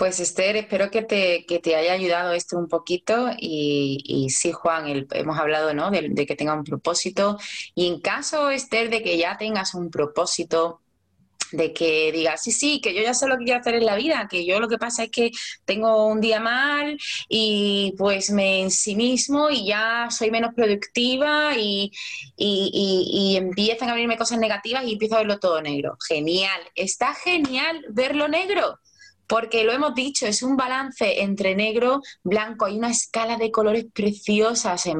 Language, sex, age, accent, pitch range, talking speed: Spanish, female, 20-39, Spanish, 170-230 Hz, 185 wpm